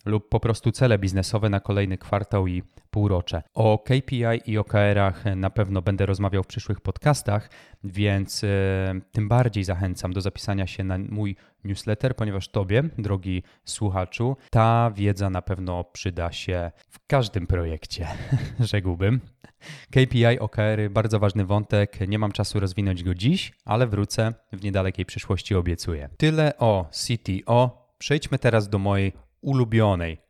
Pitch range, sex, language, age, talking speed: 95-120 Hz, male, Polish, 20-39, 140 wpm